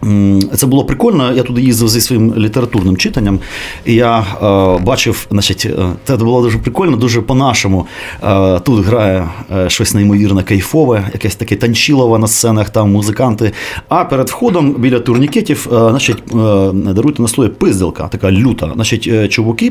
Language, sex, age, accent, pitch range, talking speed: Ukrainian, male, 30-49, native, 100-130 Hz, 150 wpm